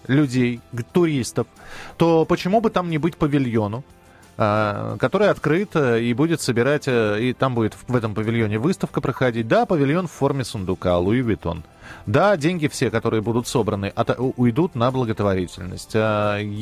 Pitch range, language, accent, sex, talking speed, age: 110-155 Hz, Russian, native, male, 135 wpm, 20-39